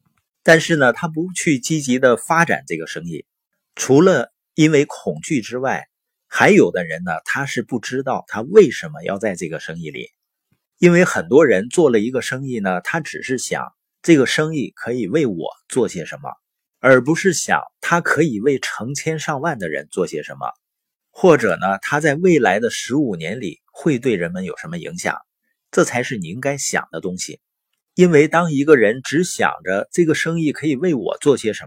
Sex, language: male, Chinese